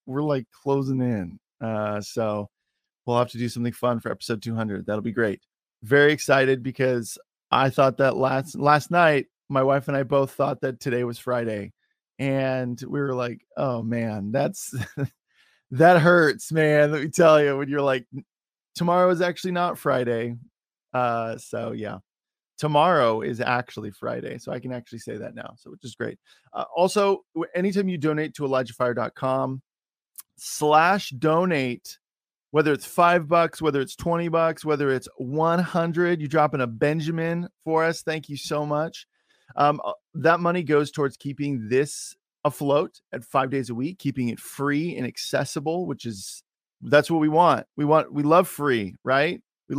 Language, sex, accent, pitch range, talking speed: English, male, American, 125-160 Hz, 170 wpm